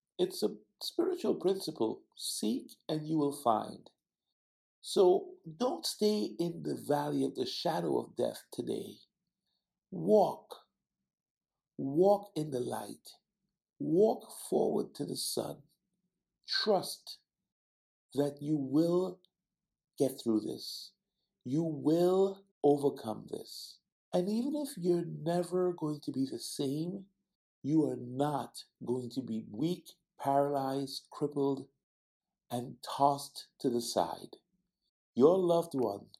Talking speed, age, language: 115 wpm, 50-69, English